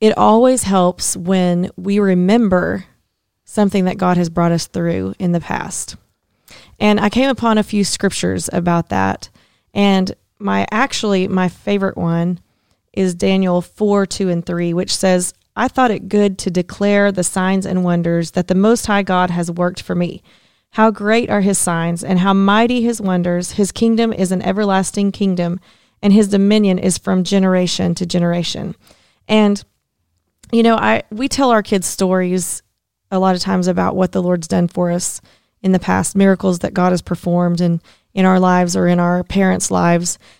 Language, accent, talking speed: English, American, 175 wpm